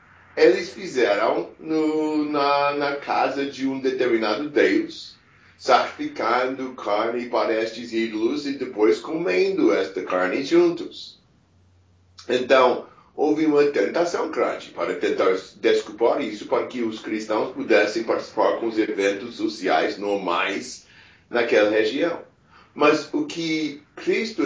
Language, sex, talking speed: English, male, 115 wpm